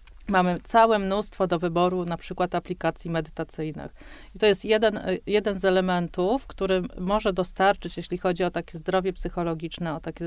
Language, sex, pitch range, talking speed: Polish, female, 165-185 Hz, 160 wpm